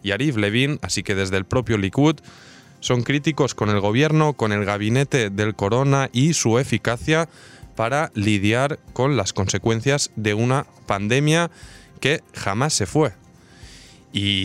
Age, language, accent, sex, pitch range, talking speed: 20-39, Spanish, Spanish, male, 105-150 Hz, 145 wpm